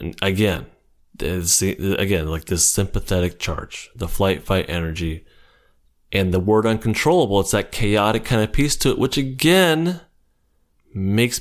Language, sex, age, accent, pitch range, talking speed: English, male, 30-49, American, 85-110 Hz, 130 wpm